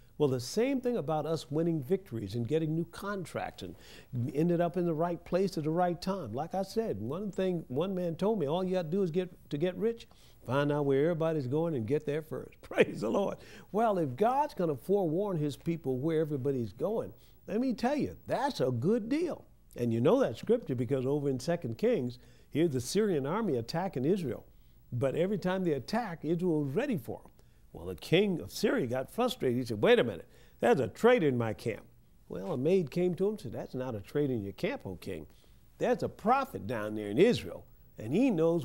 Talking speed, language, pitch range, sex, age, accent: 225 wpm, English, 135-190 Hz, male, 50-69, American